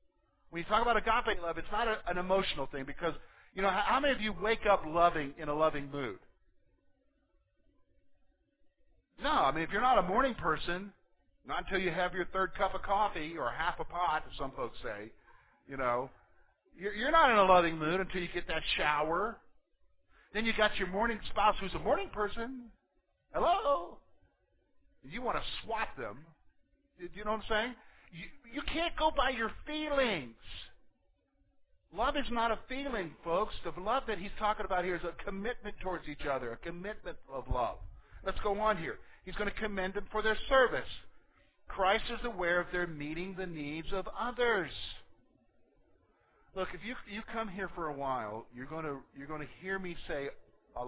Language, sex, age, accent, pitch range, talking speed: English, male, 50-69, American, 155-215 Hz, 185 wpm